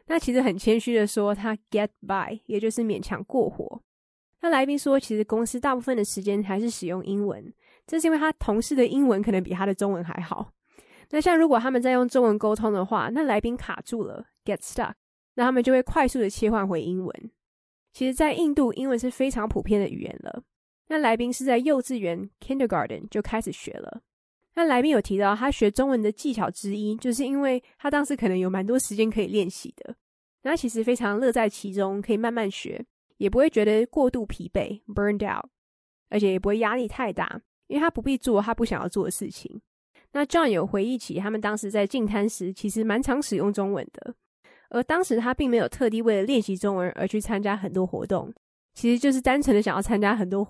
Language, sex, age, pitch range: English, female, 20-39, 205-255 Hz